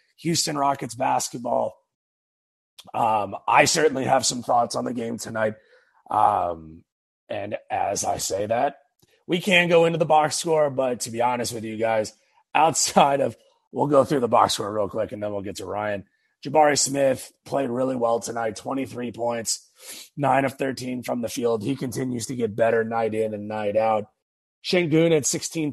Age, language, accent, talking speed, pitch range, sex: 30-49, English, American, 180 wpm, 115-145 Hz, male